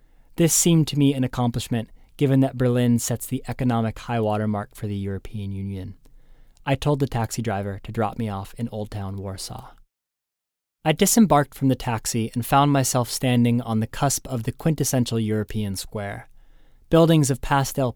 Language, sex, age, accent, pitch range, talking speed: English, male, 20-39, American, 105-130 Hz, 170 wpm